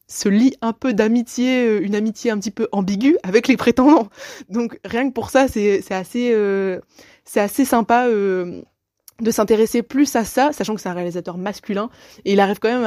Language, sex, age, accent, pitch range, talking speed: French, female, 20-39, French, 185-230 Hz, 205 wpm